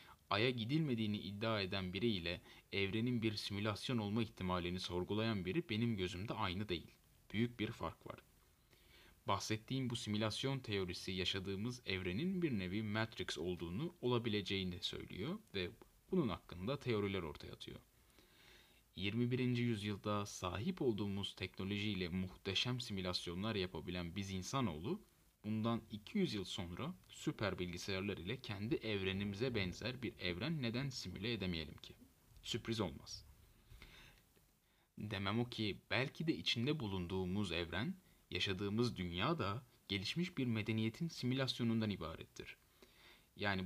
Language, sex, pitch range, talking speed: Turkish, male, 95-120 Hz, 115 wpm